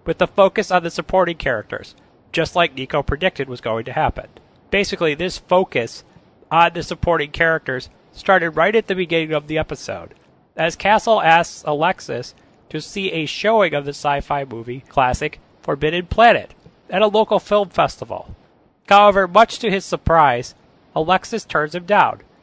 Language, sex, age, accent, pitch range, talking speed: English, male, 30-49, American, 150-200 Hz, 160 wpm